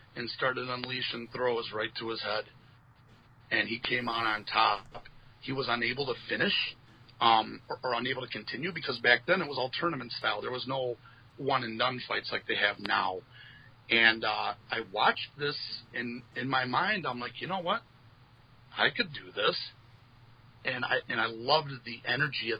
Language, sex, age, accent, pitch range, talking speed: English, male, 40-59, American, 115-130 Hz, 190 wpm